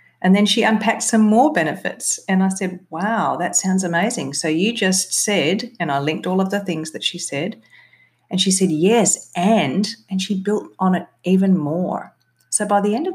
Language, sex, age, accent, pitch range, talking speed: English, female, 40-59, Australian, 145-190 Hz, 205 wpm